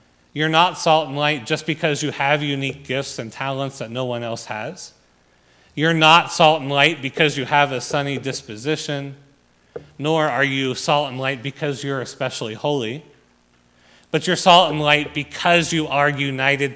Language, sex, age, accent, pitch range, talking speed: English, male, 30-49, American, 115-150 Hz, 170 wpm